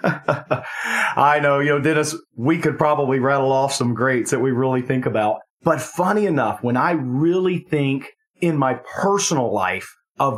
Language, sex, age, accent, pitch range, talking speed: English, male, 40-59, American, 120-155 Hz, 170 wpm